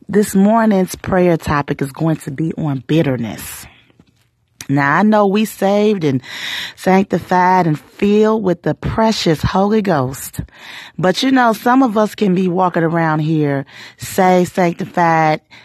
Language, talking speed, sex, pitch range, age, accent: English, 140 wpm, female, 140-190 Hz, 30-49, American